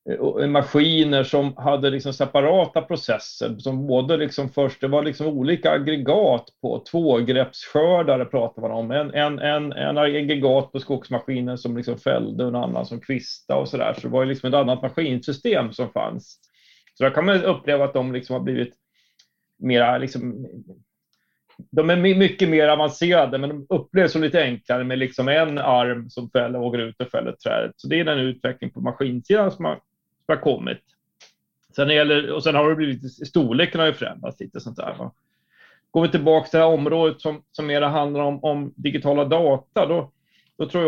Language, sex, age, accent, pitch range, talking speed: Swedish, male, 30-49, native, 130-155 Hz, 185 wpm